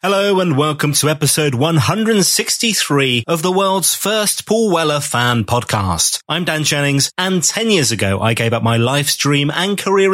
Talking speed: 170 wpm